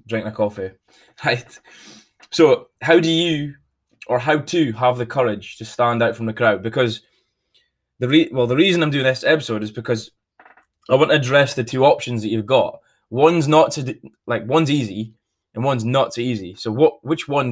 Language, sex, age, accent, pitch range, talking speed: English, male, 20-39, British, 110-140 Hz, 200 wpm